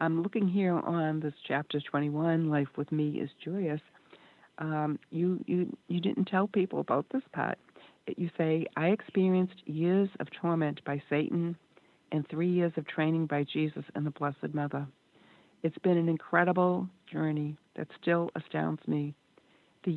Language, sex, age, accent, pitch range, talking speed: English, female, 60-79, American, 150-180 Hz, 155 wpm